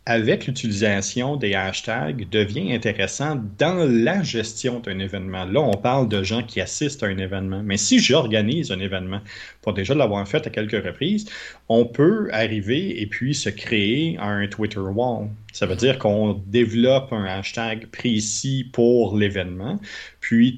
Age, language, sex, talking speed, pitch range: 30-49, French, male, 155 wpm, 100-125 Hz